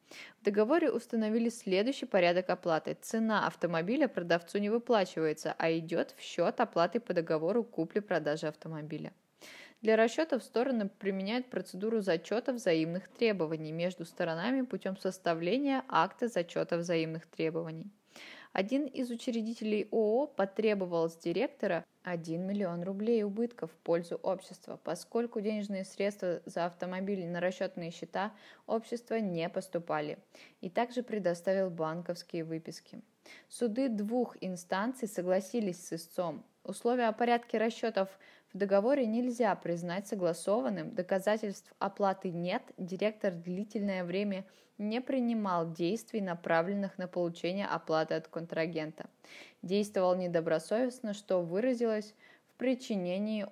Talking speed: 115 wpm